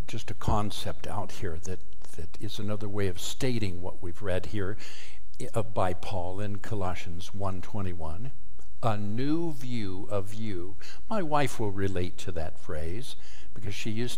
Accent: American